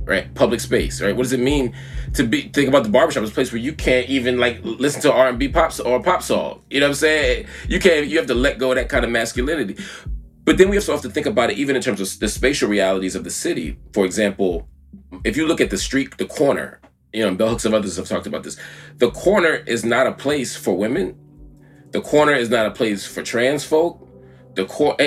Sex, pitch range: male, 95-130 Hz